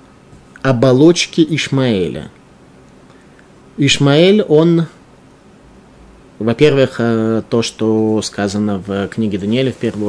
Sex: male